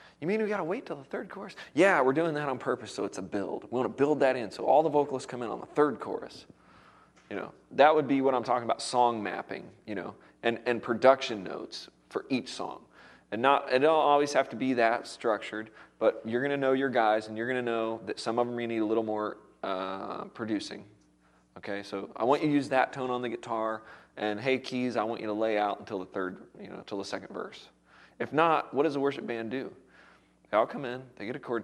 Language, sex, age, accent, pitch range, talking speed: English, male, 30-49, American, 110-135 Hz, 250 wpm